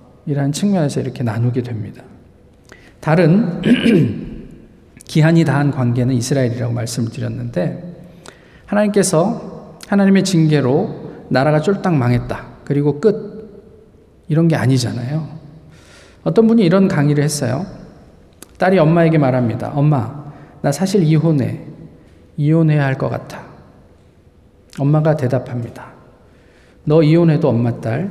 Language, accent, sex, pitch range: Korean, native, male, 125-170 Hz